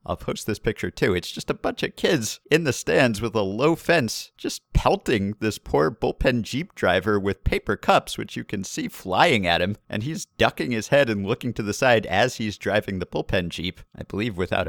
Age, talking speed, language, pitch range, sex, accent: 50-69, 220 wpm, English, 100-140 Hz, male, American